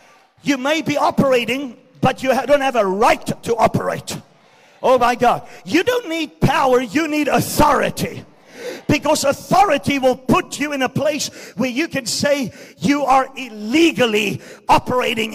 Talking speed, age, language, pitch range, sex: 150 wpm, 50-69, English, 240-285 Hz, male